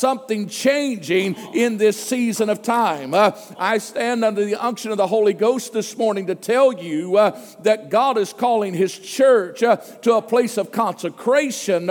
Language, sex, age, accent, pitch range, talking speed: English, male, 50-69, American, 195-235 Hz, 175 wpm